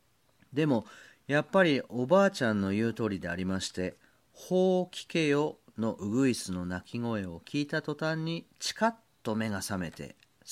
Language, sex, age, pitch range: Japanese, male, 40-59, 95-155 Hz